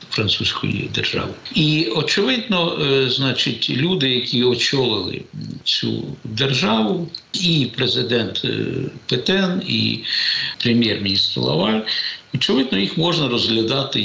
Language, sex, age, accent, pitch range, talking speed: Ukrainian, male, 60-79, native, 115-160 Hz, 100 wpm